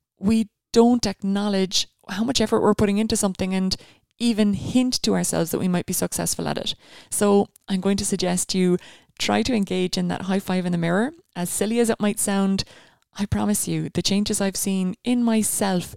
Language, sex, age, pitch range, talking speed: English, female, 20-39, 180-215 Hz, 200 wpm